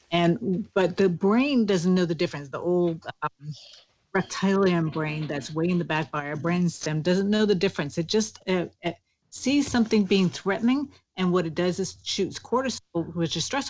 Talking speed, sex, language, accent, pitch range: 195 wpm, female, English, American, 160-195 Hz